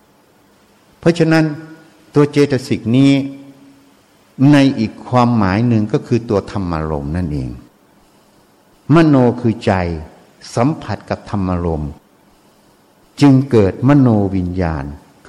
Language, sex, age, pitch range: Thai, male, 60-79, 95-135 Hz